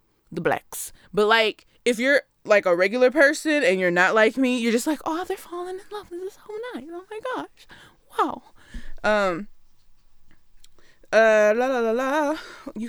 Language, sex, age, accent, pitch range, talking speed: English, female, 10-29, American, 215-305 Hz, 170 wpm